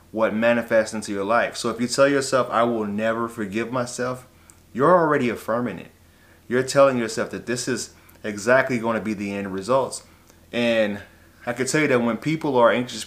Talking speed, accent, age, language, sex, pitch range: 195 wpm, American, 30-49, English, male, 100-125 Hz